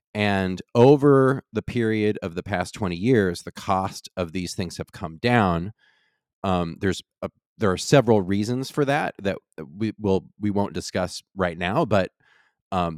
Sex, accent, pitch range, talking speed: male, American, 90-110 Hz, 175 wpm